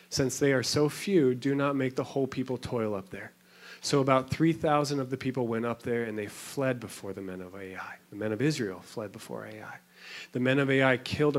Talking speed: 225 wpm